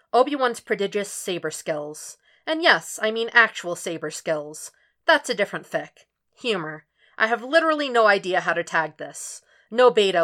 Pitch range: 160-215 Hz